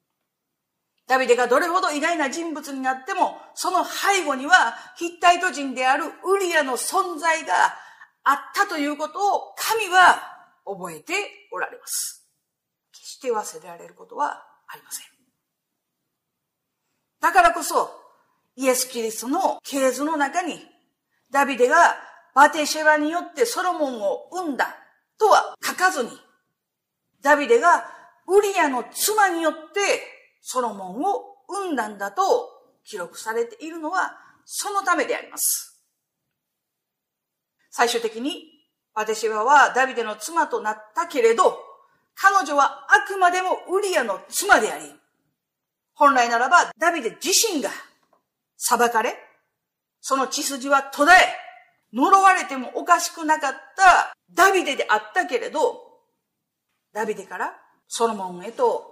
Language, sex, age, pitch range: Japanese, female, 50-69, 265-385 Hz